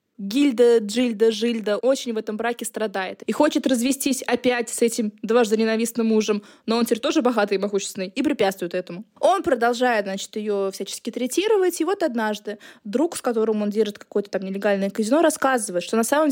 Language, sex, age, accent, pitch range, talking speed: Russian, female, 20-39, native, 215-280 Hz, 180 wpm